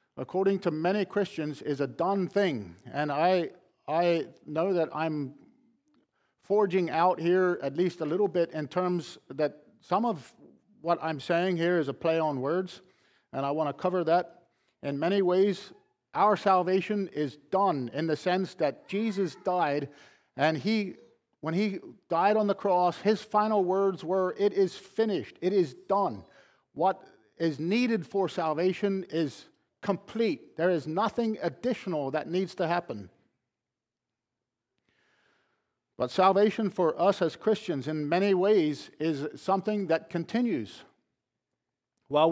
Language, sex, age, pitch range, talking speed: English, male, 50-69, 155-195 Hz, 145 wpm